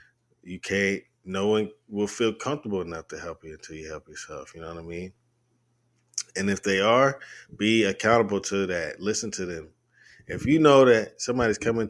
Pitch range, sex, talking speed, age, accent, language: 85-115 Hz, male, 185 wpm, 20-39, American, English